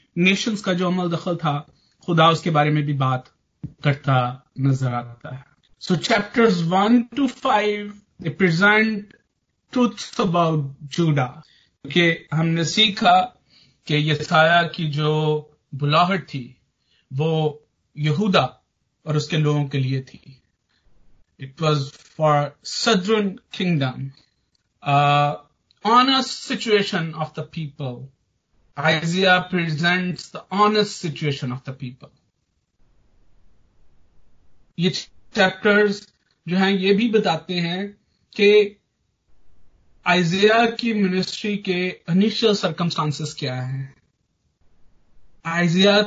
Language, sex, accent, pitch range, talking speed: Hindi, male, native, 145-205 Hz, 100 wpm